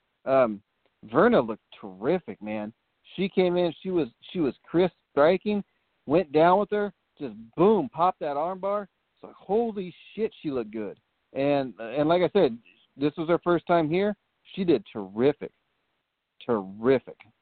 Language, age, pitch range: English, 40-59, 125-170 Hz